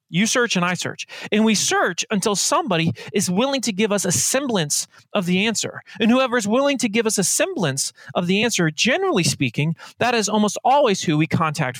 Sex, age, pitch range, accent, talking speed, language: male, 30-49, 145-220 Hz, American, 210 wpm, English